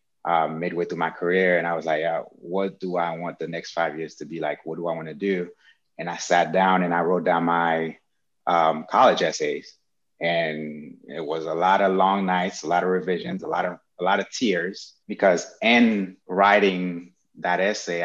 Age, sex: 30-49, male